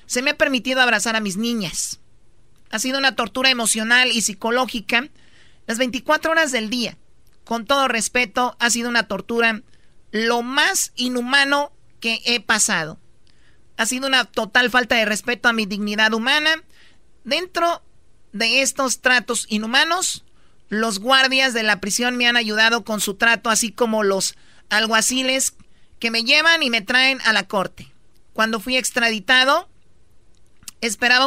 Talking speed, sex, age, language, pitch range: 150 wpm, male, 40-59, Spanish, 225-265 Hz